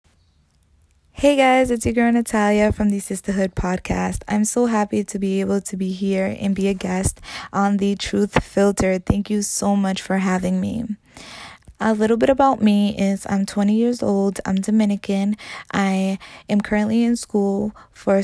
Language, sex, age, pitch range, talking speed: English, female, 20-39, 185-205 Hz, 170 wpm